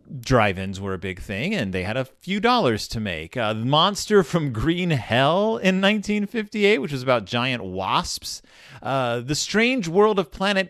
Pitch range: 115-190 Hz